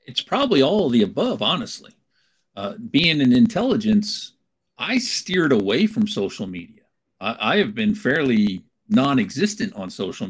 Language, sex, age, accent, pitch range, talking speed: English, male, 50-69, American, 135-225 Hz, 150 wpm